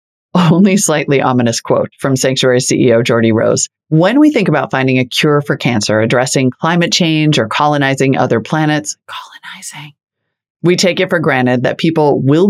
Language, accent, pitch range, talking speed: English, American, 130-180 Hz, 165 wpm